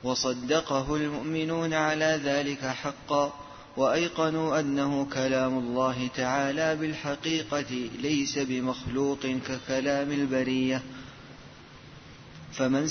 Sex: male